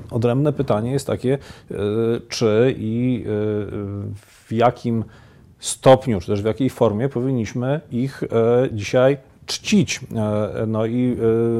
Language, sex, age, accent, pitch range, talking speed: Polish, male, 40-59, native, 105-125 Hz, 100 wpm